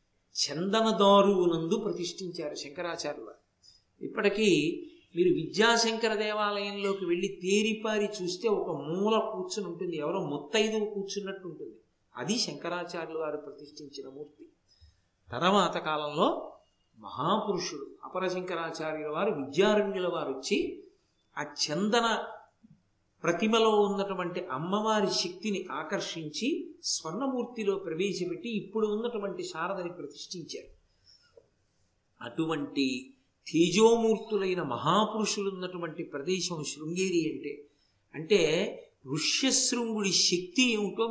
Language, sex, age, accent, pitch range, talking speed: Telugu, male, 50-69, native, 165-220 Hz, 85 wpm